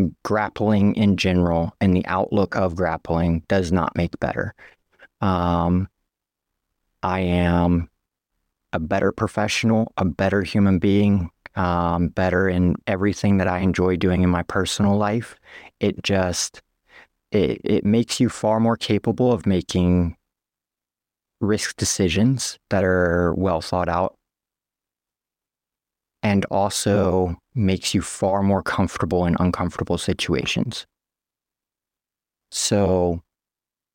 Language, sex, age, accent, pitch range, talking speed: English, male, 30-49, American, 90-105 Hz, 110 wpm